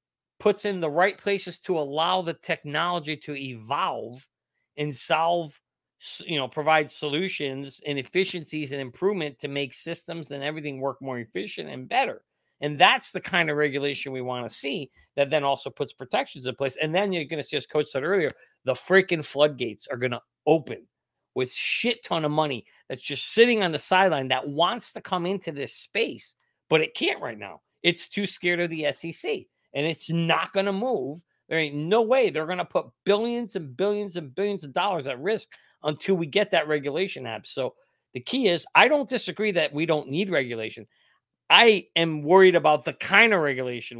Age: 40-59